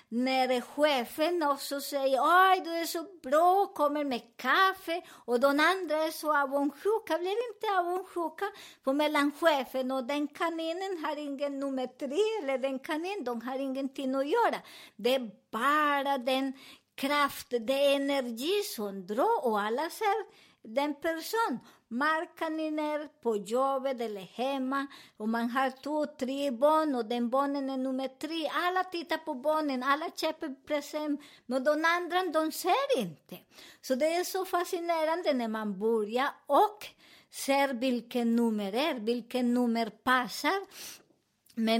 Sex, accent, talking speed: male, American, 155 wpm